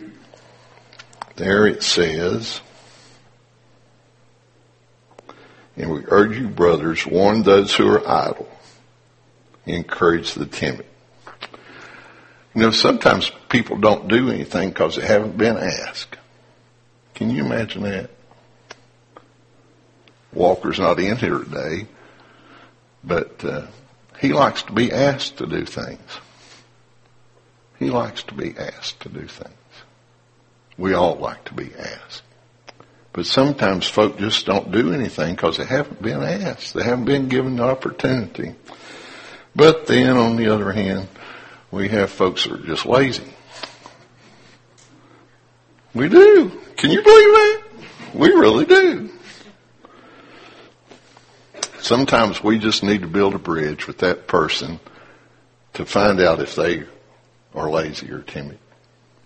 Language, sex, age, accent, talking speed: English, male, 60-79, American, 125 wpm